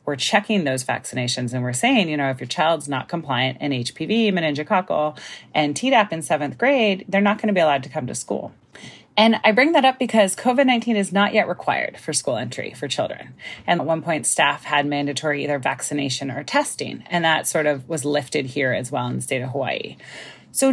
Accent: American